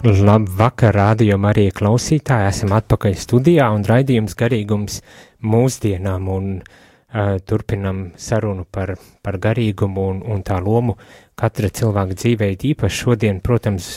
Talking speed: 120 wpm